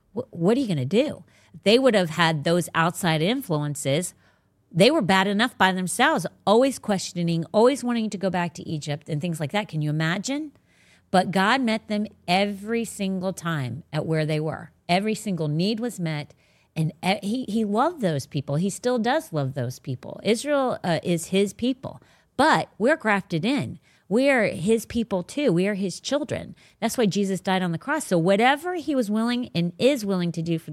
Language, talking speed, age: English, 195 wpm, 40-59